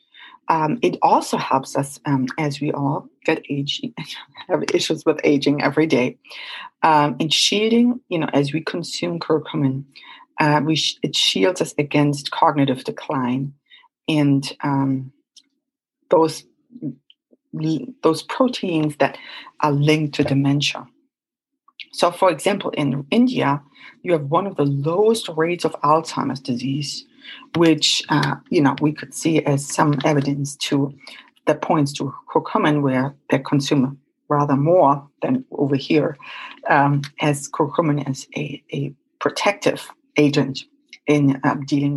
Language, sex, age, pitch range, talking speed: English, female, 30-49, 140-190 Hz, 135 wpm